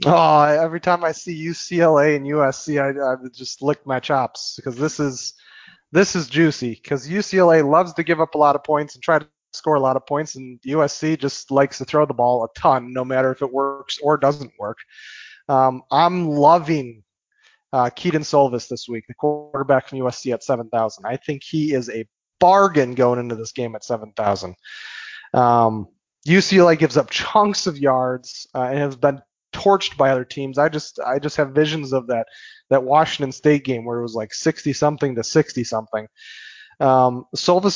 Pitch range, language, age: 130-160 Hz, English, 30-49